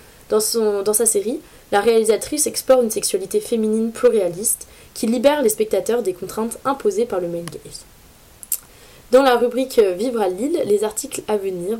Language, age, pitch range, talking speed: French, 20-39, 205-260 Hz, 175 wpm